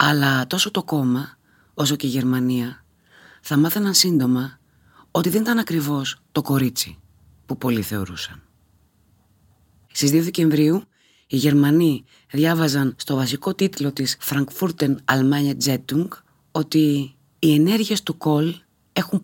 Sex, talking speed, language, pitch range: female, 120 wpm, Greek, 125-160 Hz